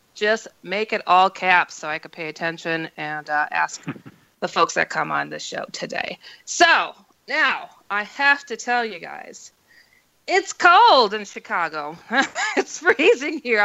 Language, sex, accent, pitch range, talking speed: English, female, American, 165-245 Hz, 160 wpm